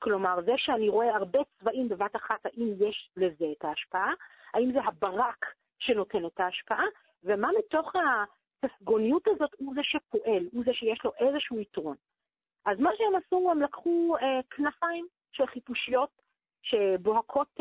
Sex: female